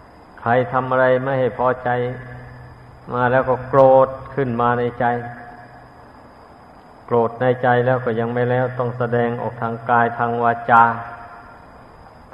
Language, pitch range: Thai, 115-130 Hz